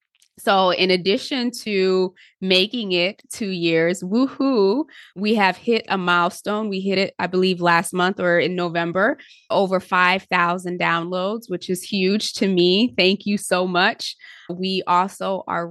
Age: 20-39